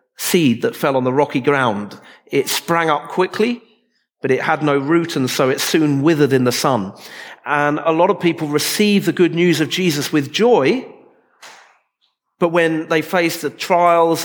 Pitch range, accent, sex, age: 145-185 Hz, British, male, 40-59